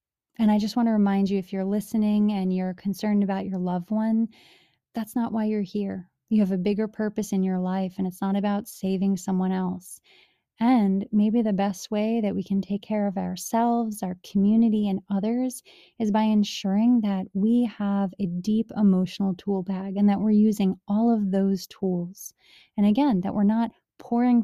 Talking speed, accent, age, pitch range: 190 wpm, American, 30-49, 185-215 Hz